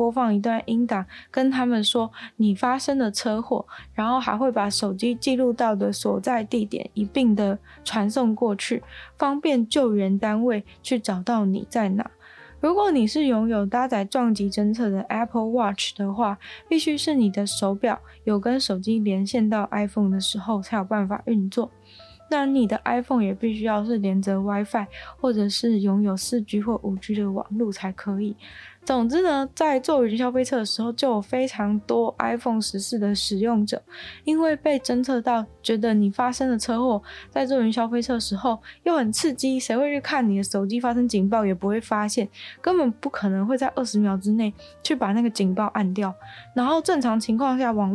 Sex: female